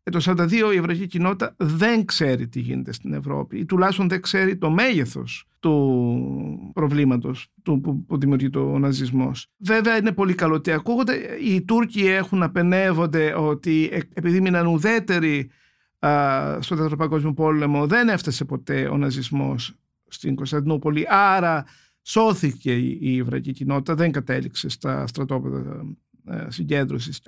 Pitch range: 140-190 Hz